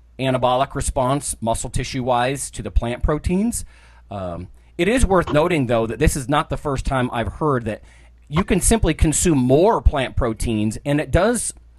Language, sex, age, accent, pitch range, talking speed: English, male, 30-49, American, 105-140 Hz, 180 wpm